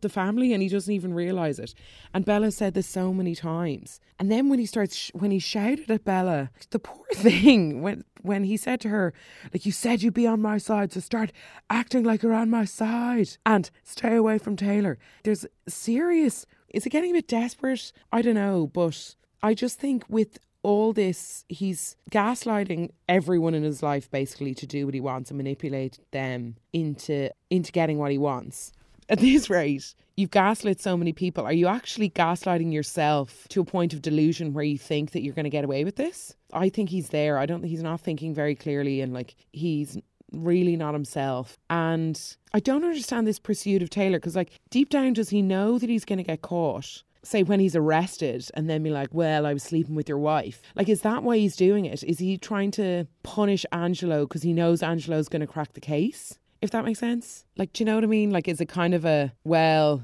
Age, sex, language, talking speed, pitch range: 20-39, female, English, 215 wpm, 155-215 Hz